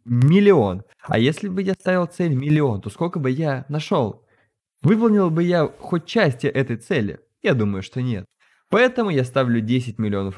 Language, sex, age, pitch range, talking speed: Russian, male, 20-39, 110-155 Hz, 170 wpm